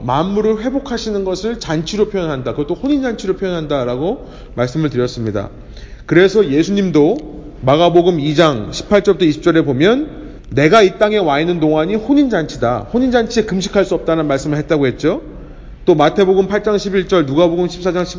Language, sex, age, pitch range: Korean, male, 30-49, 140-210 Hz